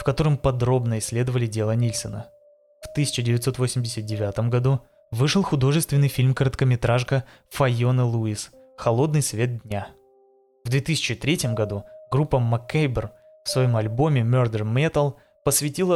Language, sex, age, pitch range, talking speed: Russian, male, 20-39, 115-140 Hz, 105 wpm